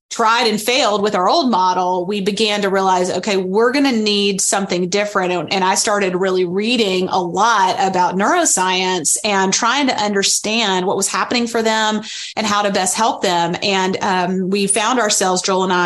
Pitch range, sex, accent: 190-220 Hz, female, American